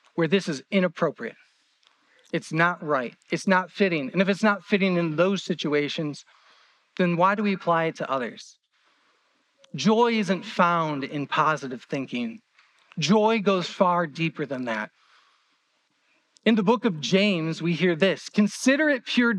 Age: 40-59